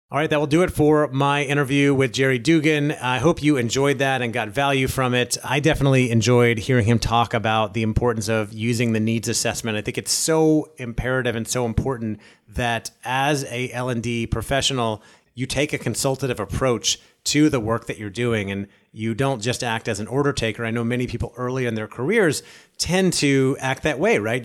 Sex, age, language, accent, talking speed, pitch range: male, 30-49, English, American, 205 wpm, 110-135 Hz